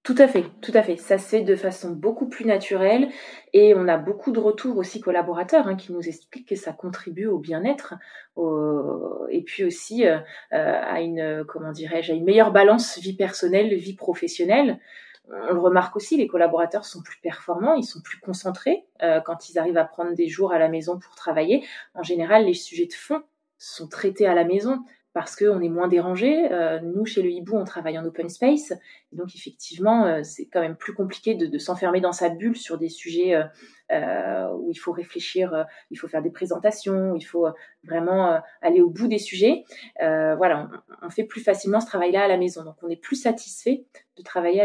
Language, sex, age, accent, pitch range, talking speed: French, female, 20-39, French, 170-225 Hz, 210 wpm